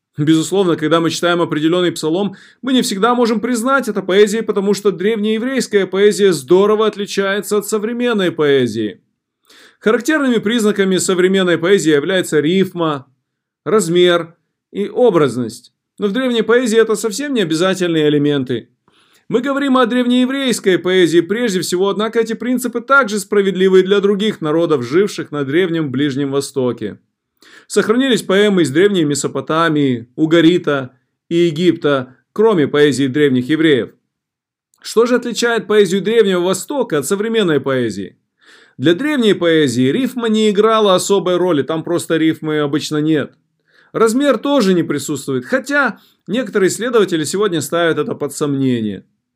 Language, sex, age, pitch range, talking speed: Russian, male, 30-49, 155-225 Hz, 130 wpm